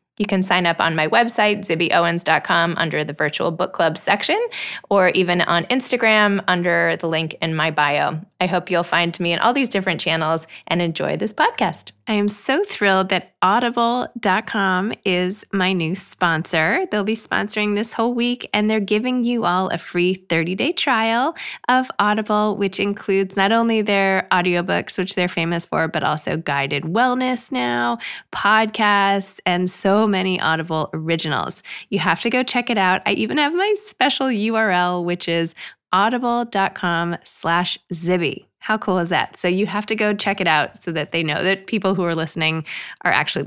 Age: 20-39